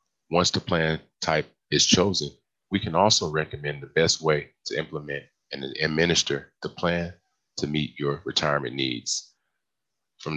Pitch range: 75-85 Hz